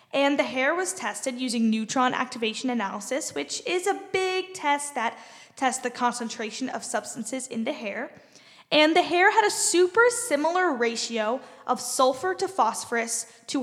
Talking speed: 160 wpm